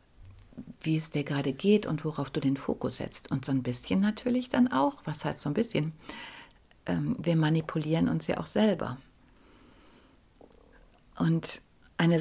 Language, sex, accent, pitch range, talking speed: German, female, German, 150-200 Hz, 150 wpm